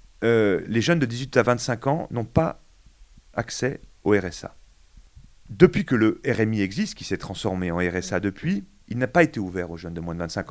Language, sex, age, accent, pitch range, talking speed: French, male, 40-59, French, 95-145 Hz, 200 wpm